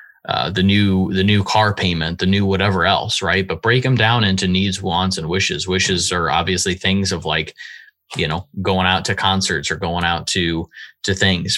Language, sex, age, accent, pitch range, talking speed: English, male, 20-39, American, 90-110 Hz, 200 wpm